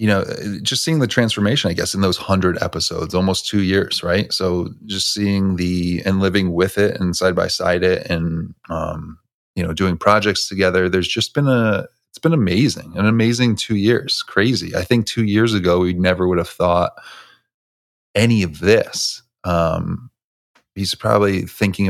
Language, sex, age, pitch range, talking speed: English, male, 30-49, 90-105 Hz, 175 wpm